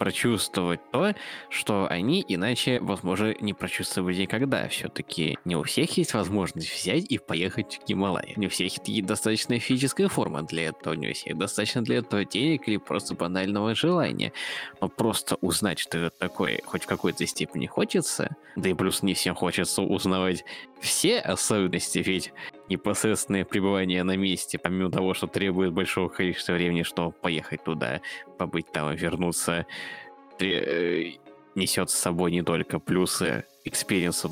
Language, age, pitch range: Russian, 20-39, 90-120 Hz